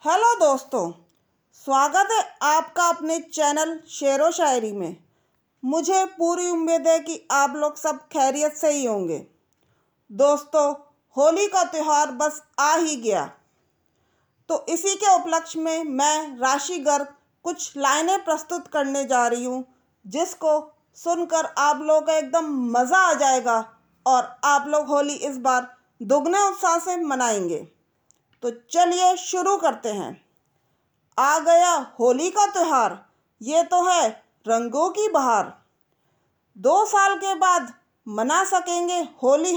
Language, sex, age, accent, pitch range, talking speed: Hindi, female, 40-59, native, 275-345 Hz, 130 wpm